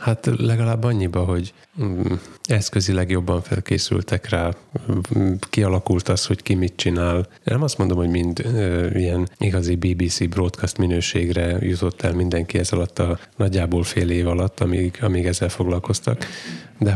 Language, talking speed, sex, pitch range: Hungarian, 140 wpm, male, 85-105 Hz